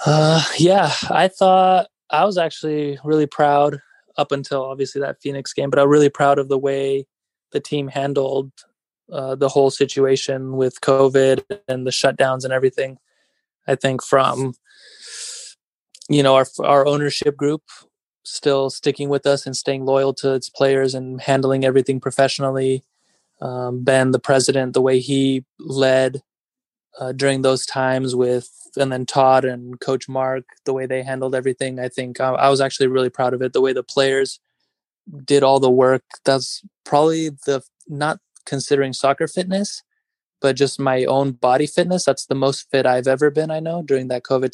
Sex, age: male, 20-39